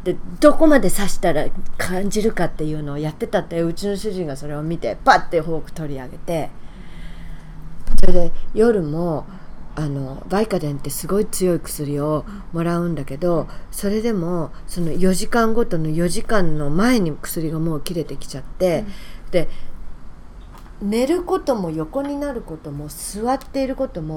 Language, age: English, 40-59